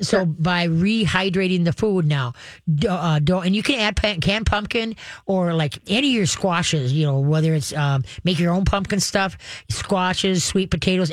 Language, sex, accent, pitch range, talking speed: English, female, American, 155-190 Hz, 175 wpm